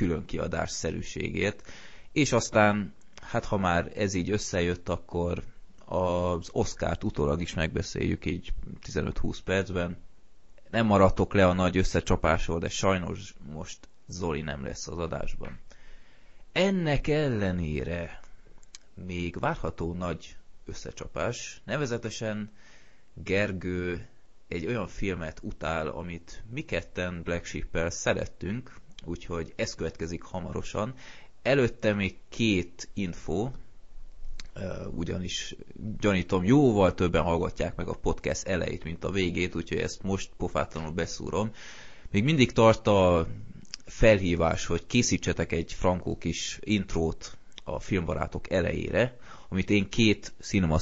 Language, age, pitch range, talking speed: Hungarian, 20-39, 85-105 Hz, 110 wpm